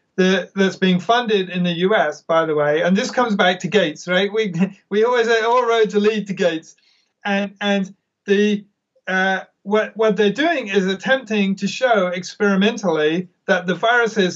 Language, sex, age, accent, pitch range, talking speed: English, male, 40-59, British, 175-205 Hz, 170 wpm